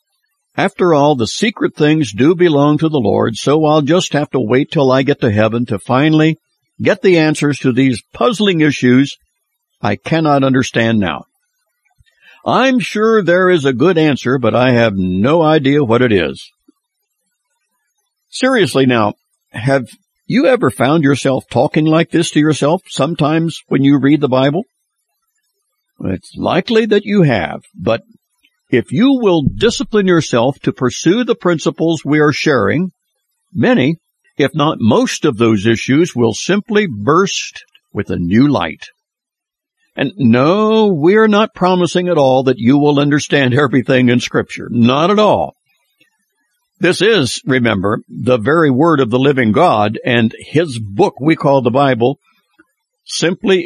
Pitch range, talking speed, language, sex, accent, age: 130-200 Hz, 150 wpm, English, male, American, 60-79